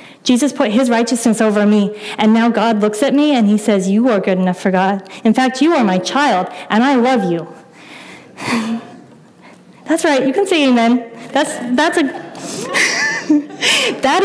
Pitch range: 200-255 Hz